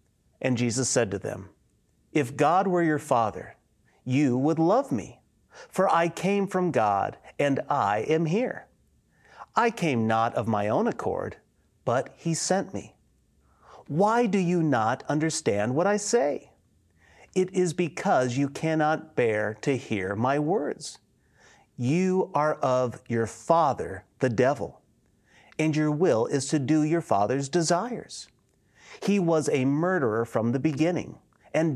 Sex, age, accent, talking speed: male, 40-59, American, 145 wpm